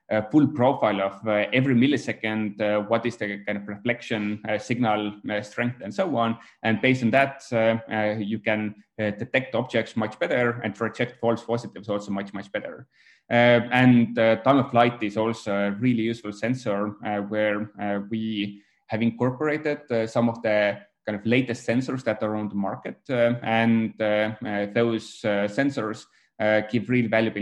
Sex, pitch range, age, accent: male, 105-120 Hz, 20-39, Finnish